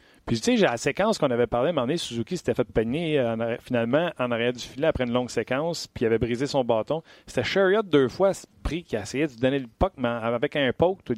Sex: male